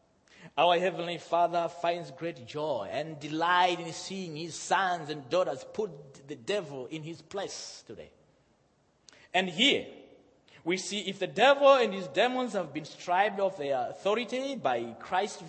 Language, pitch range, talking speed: English, 155-255 Hz, 150 wpm